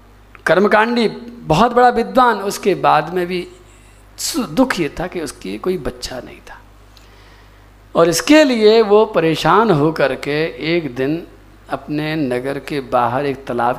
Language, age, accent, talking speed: Hindi, 50-69, native, 135 wpm